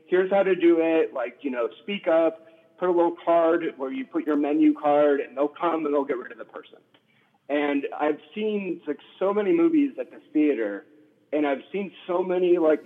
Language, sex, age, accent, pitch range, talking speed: English, male, 30-49, American, 140-180 Hz, 215 wpm